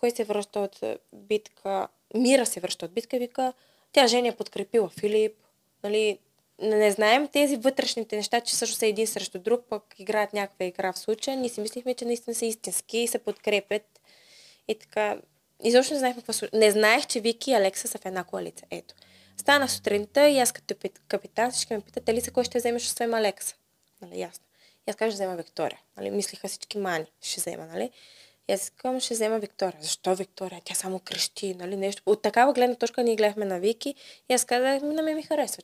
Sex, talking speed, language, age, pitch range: female, 200 wpm, Bulgarian, 20-39, 190-240 Hz